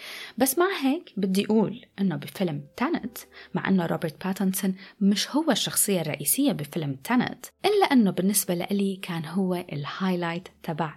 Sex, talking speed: female, 140 wpm